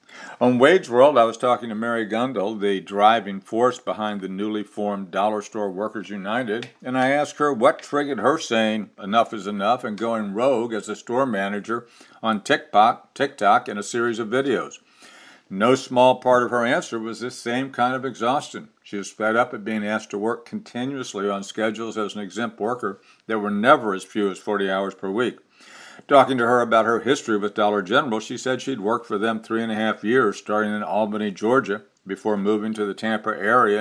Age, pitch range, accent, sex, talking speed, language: 60-79, 105-120 Hz, American, male, 200 wpm, English